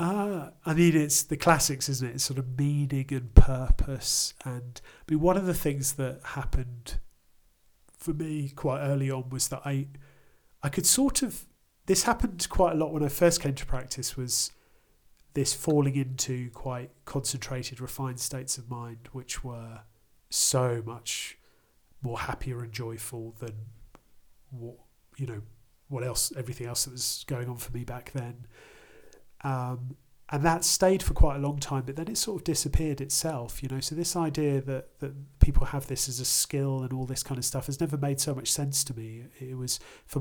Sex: male